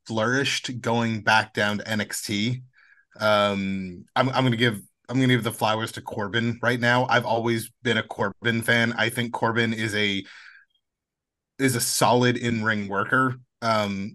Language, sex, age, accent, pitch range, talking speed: English, male, 30-49, American, 105-125 Hz, 155 wpm